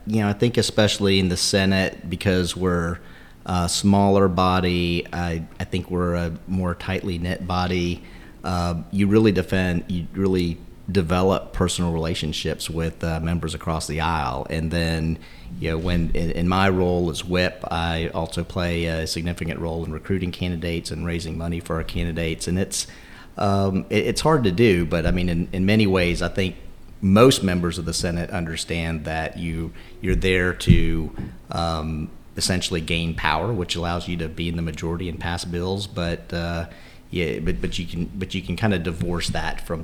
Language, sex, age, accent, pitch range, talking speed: English, male, 40-59, American, 85-95 Hz, 180 wpm